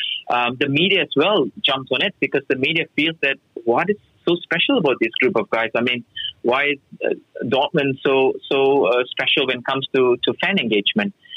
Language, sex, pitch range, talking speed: German, male, 125-170 Hz, 205 wpm